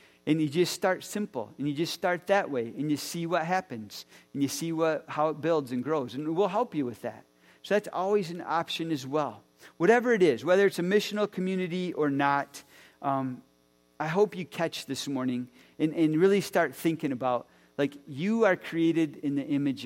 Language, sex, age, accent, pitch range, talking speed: English, male, 40-59, American, 125-175 Hz, 205 wpm